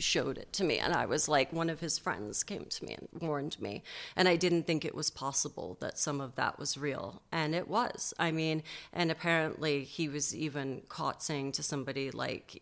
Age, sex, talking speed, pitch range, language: 30-49, female, 220 wpm, 140-165 Hz, English